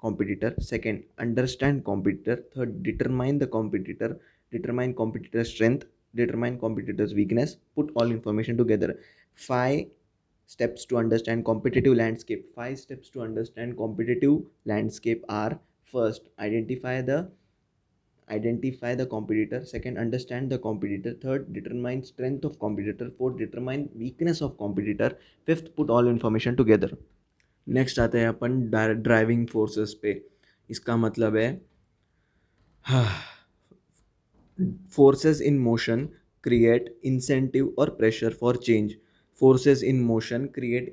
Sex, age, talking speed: male, 20-39, 115 wpm